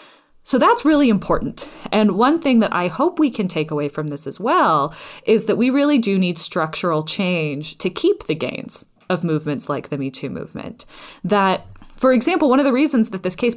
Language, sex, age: English, female, 20-39